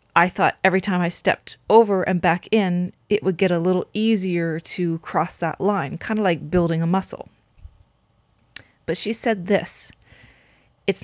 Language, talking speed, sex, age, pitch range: English, 170 wpm, female, 30-49, 165-195 Hz